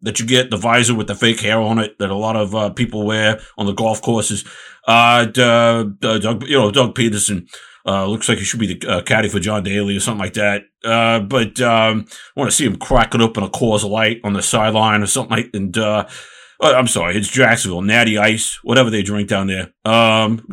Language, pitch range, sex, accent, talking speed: English, 105-120 Hz, male, American, 235 wpm